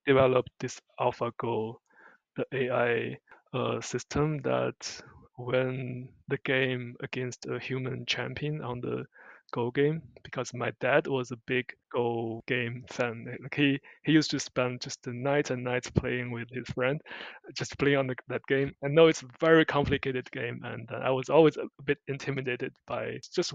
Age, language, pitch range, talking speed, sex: 20-39, English, 120-140 Hz, 165 wpm, male